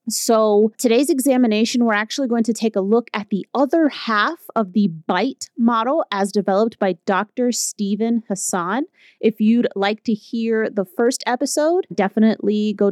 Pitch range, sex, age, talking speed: 200-245 Hz, female, 30-49, 160 wpm